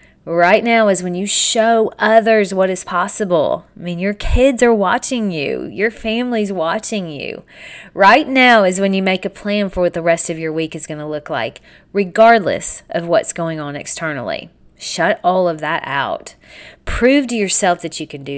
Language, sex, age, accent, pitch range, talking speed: English, female, 30-49, American, 180-235 Hz, 195 wpm